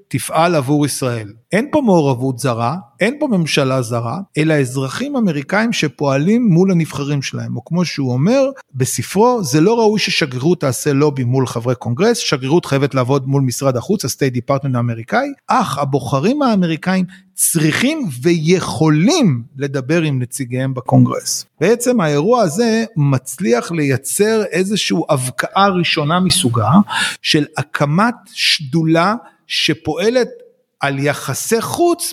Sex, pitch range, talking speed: male, 135-185 Hz, 125 wpm